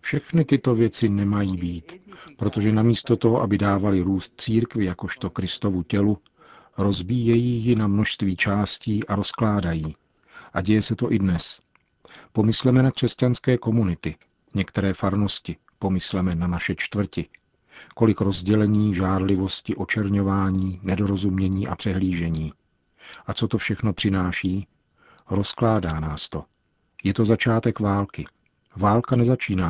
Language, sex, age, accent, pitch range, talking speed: Czech, male, 40-59, native, 90-110 Hz, 120 wpm